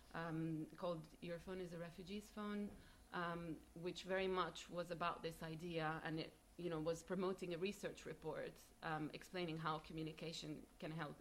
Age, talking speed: 30-49, 165 wpm